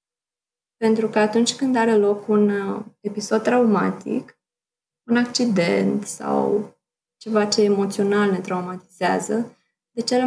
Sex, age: female, 20-39